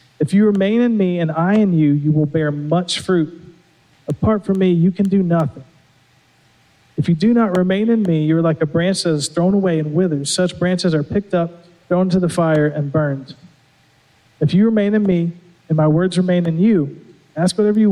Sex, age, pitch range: male, 40-59, 145-175 Hz